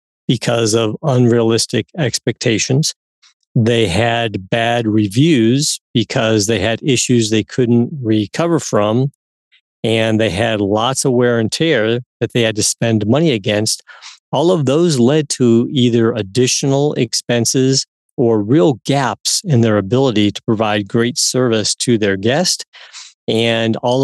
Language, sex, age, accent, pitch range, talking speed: English, male, 50-69, American, 110-135 Hz, 135 wpm